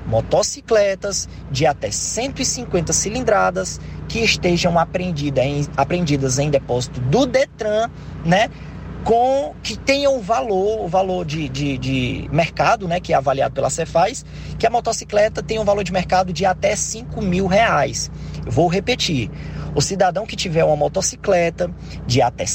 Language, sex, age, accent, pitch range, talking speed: Portuguese, male, 20-39, Brazilian, 150-215 Hz, 150 wpm